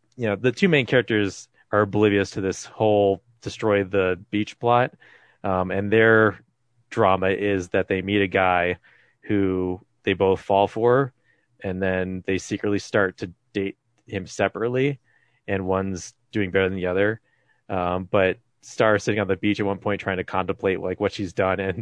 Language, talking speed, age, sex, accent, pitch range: English, 180 wpm, 30-49, male, American, 95-120 Hz